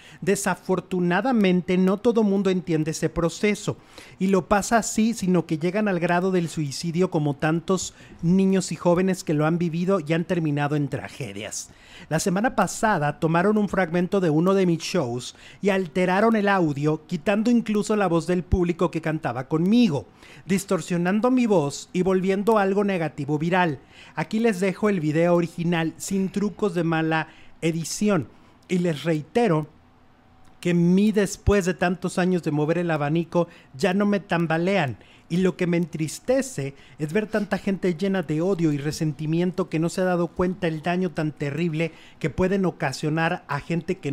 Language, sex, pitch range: Spanish, male, 155-195 Hz